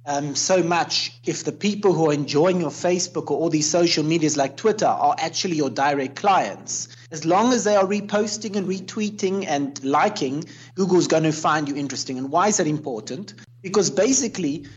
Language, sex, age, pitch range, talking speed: English, male, 30-49, 135-185 Hz, 185 wpm